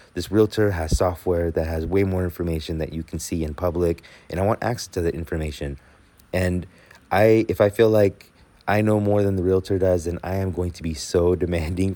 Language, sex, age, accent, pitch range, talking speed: English, male, 30-49, American, 80-100 Hz, 215 wpm